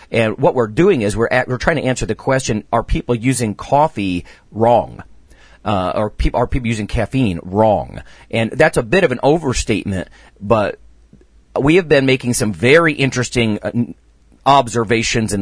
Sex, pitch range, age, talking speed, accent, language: male, 100-130 Hz, 40-59, 165 wpm, American, English